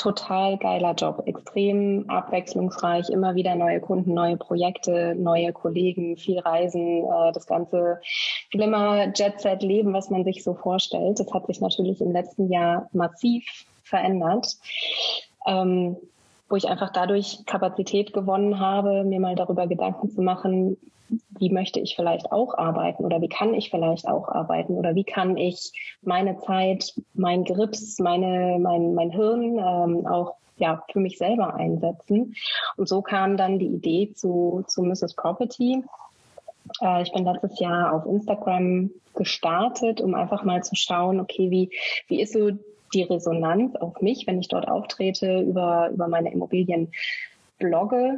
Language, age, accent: German, 20-39, German